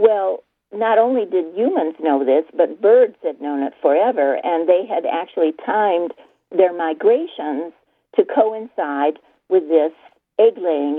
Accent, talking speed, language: American, 135 wpm, English